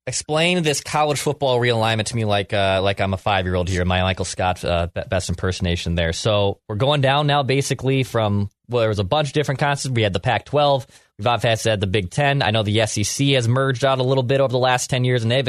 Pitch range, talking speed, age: 110-135 Hz, 245 wpm, 20-39